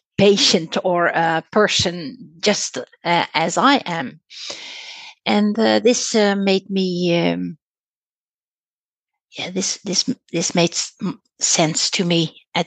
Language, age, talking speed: English, 60-79, 120 wpm